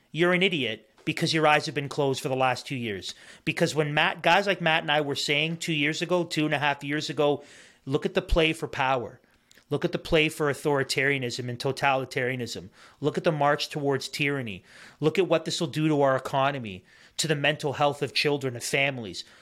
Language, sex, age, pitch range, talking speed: English, male, 30-49, 135-160 Hz, 215 wpm